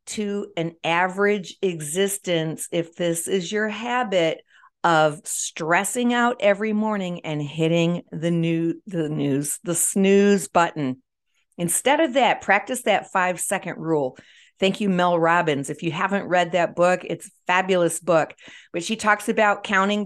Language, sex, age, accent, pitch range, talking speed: English, female, 50-69, American, 170-220 Hz, 150 wpm